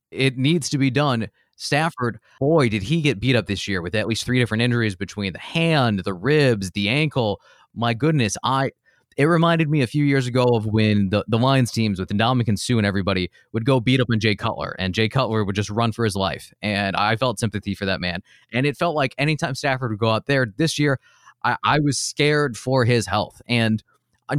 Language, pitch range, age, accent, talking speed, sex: English, 110-145 Hz, 20-39, American, 230 wpm, male